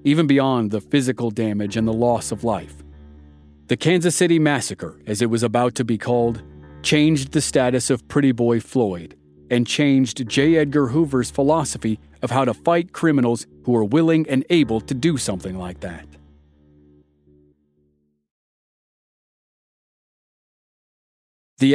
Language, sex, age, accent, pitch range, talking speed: English, male, 40-59, American, 110-145 Hz, 140 wpm